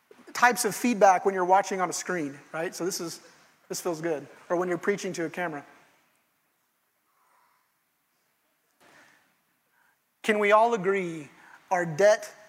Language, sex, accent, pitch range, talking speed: English, male, American, 190-255 Hz, 140 wpm